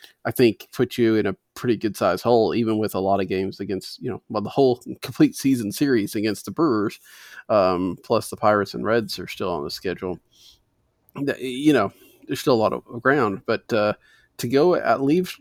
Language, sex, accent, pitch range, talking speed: English, male, American, 110-145 Hz, 205 wpm